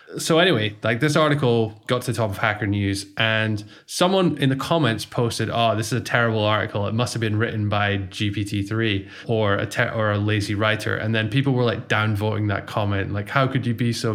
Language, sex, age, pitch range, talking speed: English, male, 20-39, 105-125 Hz, 225 wpm